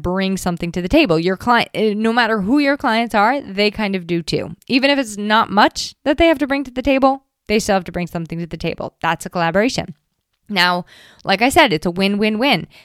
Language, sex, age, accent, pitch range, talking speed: English, female, 20-39, American, 180-250 Hz, 235 wpm